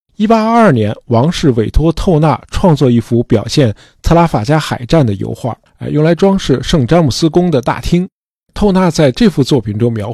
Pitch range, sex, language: 115-160 Hz, male, Chinese